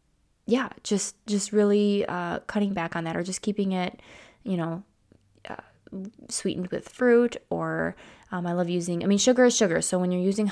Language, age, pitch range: English, 20-39, 180-215 Hz